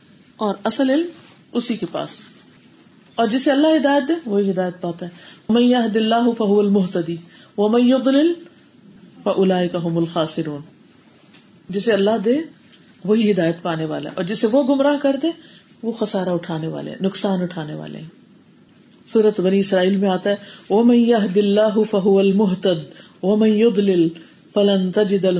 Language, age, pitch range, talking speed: Urdu, 40-59, 175-235 Hz, 130 wpm